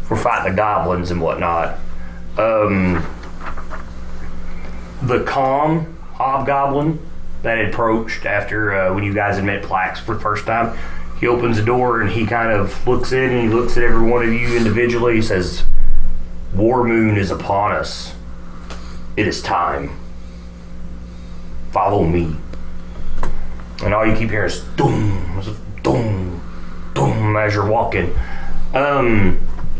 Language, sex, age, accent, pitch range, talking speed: English, male, 30-49, American, 85-120 Hz, 140 wpm